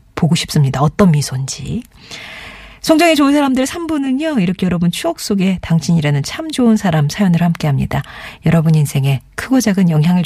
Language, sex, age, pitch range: Korean, female, 40-59, 150-215 Hz